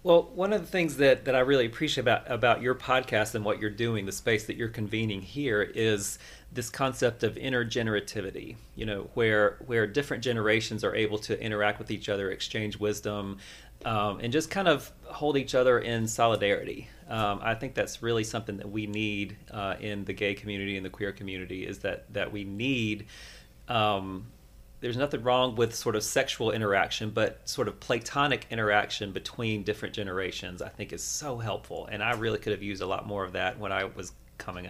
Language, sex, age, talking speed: English, male, 30-49, 195 wpm